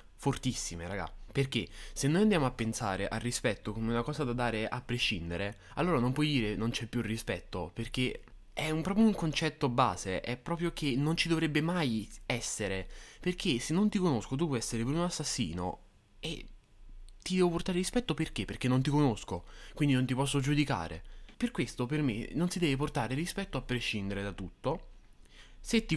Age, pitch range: 20-39, 100-135 Hz